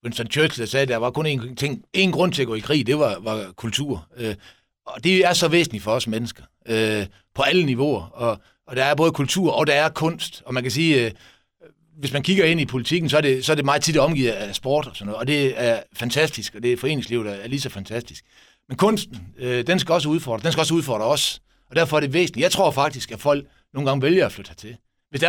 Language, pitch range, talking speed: Danish, 115-165 Hz, 255 wpm